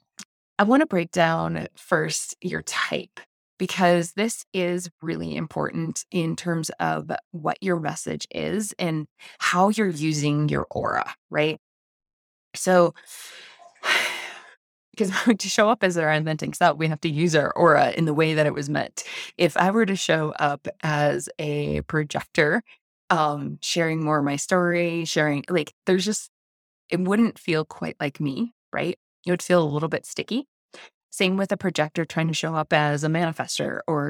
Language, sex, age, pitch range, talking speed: English, female, 20-39, 150-185 Hz, 165 wpm